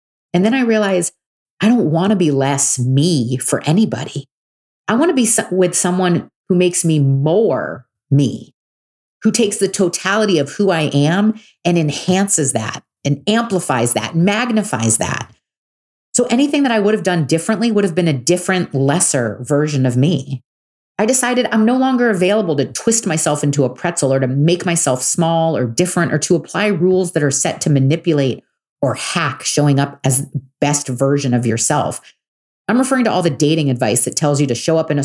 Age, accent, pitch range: 40-59, American, 135-205 Hz